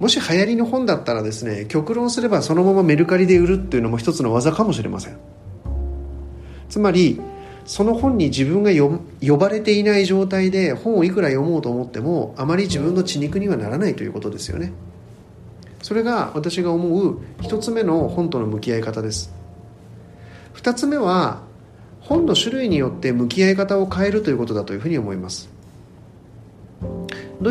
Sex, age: male, 40-59